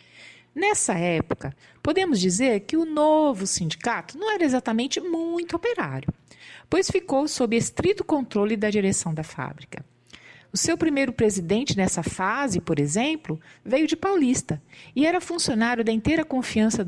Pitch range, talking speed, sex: 170-250 Hz, 140 wpm, female